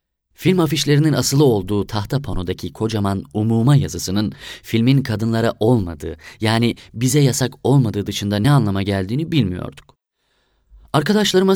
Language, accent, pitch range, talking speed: Turkish, native, 100-135 Hz, 115 wpm